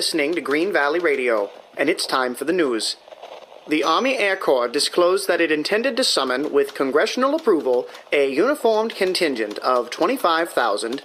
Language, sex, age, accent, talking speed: English, male, 40-59, American, 155 wpm